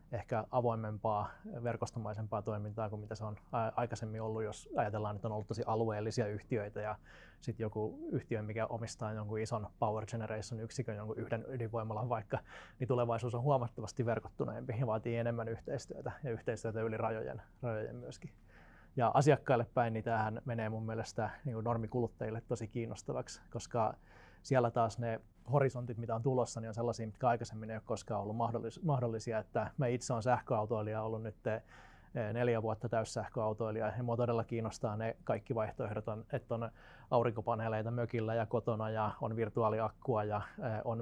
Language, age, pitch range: Finnish, 20-39, 110-120 Hz